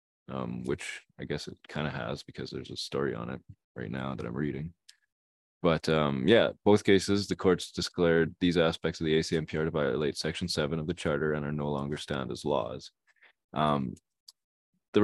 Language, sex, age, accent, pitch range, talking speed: English, male, 20-39, American, 70-85 Hz, 190 wpm